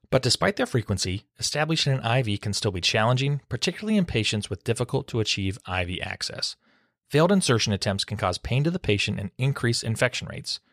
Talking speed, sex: 175 wpm, male